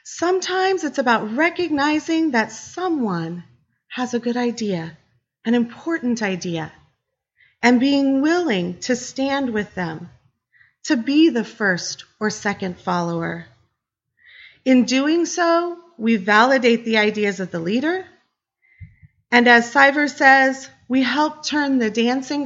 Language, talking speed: English, 125 wpm